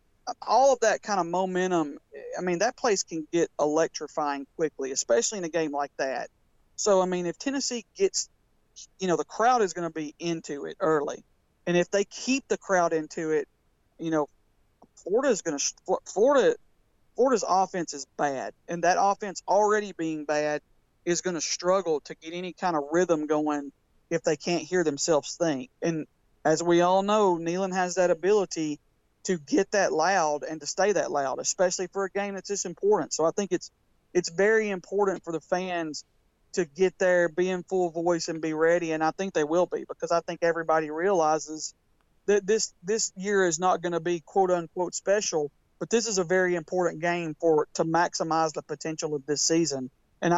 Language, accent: English, American